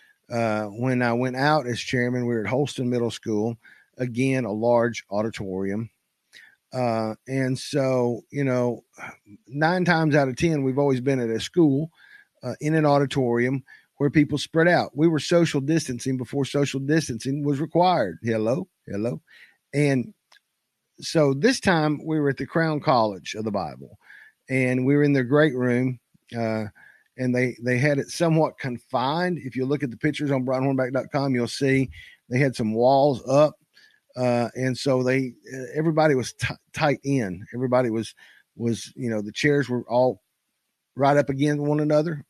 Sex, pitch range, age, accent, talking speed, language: male, 120-150 Hz, 50-69, American, 165 wpm, English